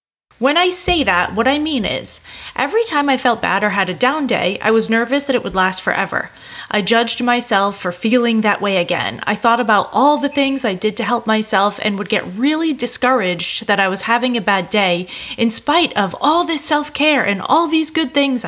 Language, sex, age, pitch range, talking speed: English, female, 20-39, 200-285 Hz, 220 wpm